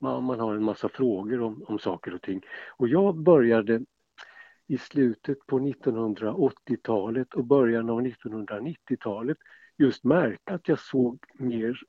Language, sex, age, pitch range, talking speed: Swedish, male, 60-79, 105-150 Hz, 135 wpm